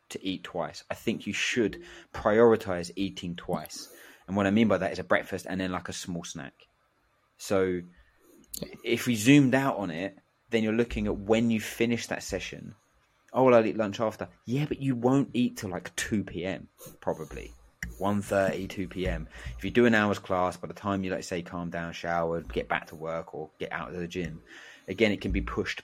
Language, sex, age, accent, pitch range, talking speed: English, male, 30-49, British, 85-105 Hz, 210 wpm